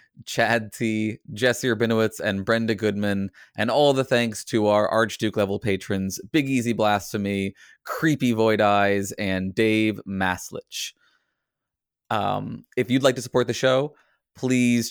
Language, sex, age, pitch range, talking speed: English, male, 20-39, 100-115 Hz, 135 wpm